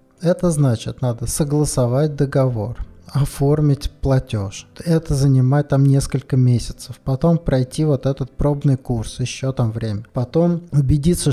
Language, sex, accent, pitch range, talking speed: Russian, male, native, 120-150 Hz, 120 wpm